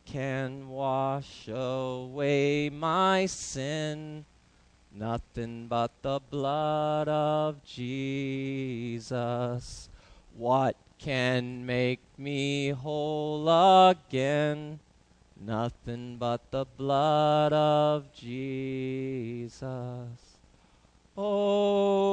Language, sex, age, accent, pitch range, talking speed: English, male, 30-49, American, 125-155 Hz, 65 wpm